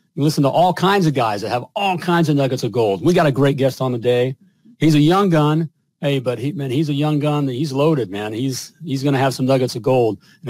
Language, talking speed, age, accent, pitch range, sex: English, 270 wpm, 50-69, American, 135-175 Hz, male